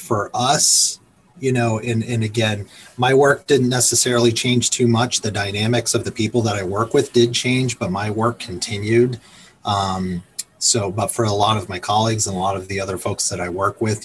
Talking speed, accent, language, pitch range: 210 wpm, American, English, 95-115 Hz